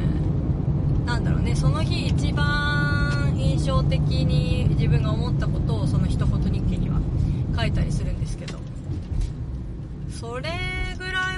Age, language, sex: 30-49, Japanese, female